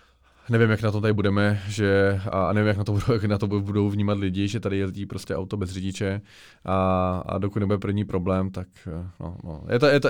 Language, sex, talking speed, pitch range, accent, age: Czech, male, 230 wpm, 95-115 Hz, native, 20-39